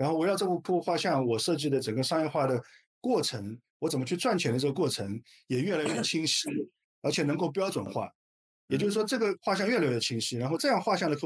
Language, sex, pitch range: Chinese, male, 120-160 Hz